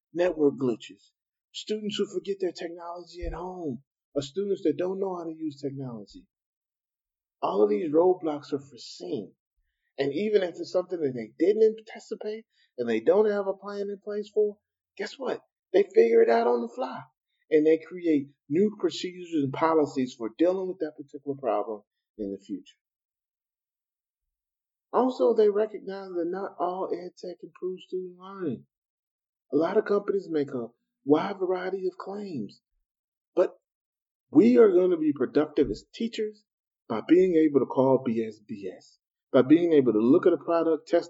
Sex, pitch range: male, 140-205 Hz